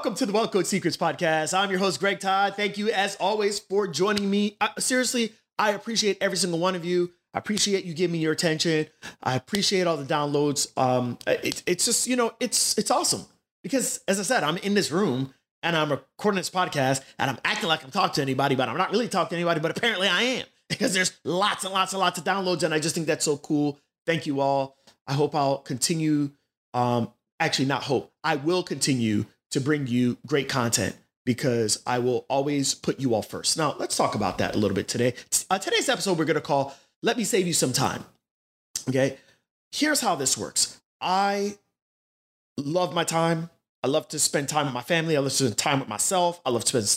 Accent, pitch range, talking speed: American, 140-195 Hz, 220 wpm